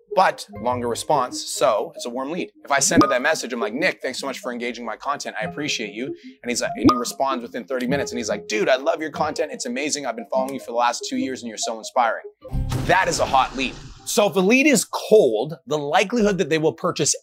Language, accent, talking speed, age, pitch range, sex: English, American, 265 wpm, 30-49, 135-195 Hz, male